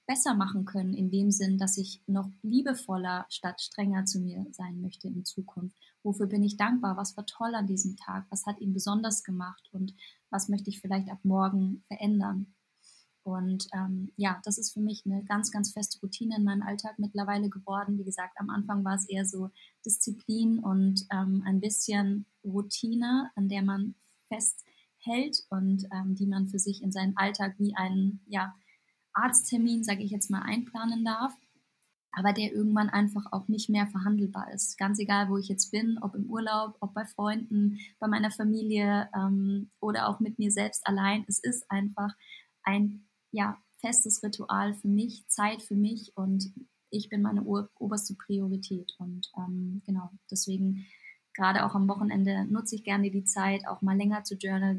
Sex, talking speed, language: female, 175 wpm, German